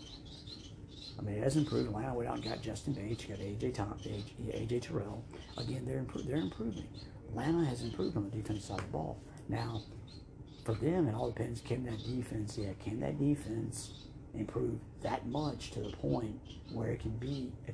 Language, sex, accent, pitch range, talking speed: English, male, American, 105-130 Hz, 195 wpm